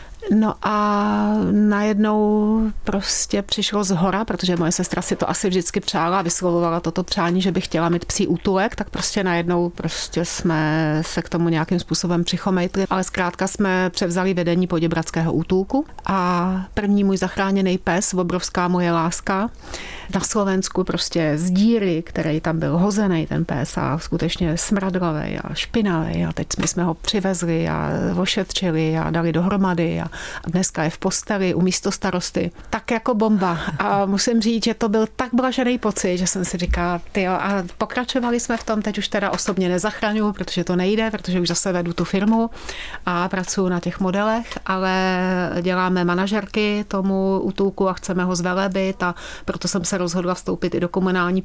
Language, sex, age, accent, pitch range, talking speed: Czech, female, 30-49, native, 170-195 Hz, 170 wpm